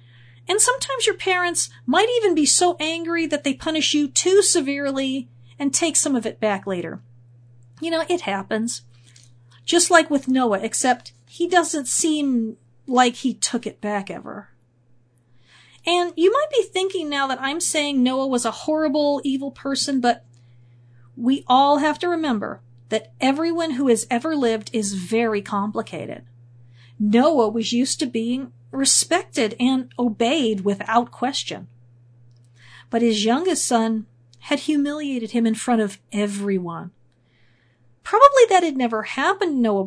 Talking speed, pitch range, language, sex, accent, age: 150 wpm, 180-300 Hz, English, female, American, 40-59